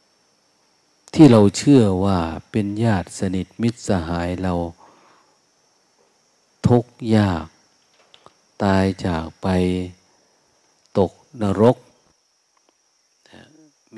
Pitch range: 90-115 Hz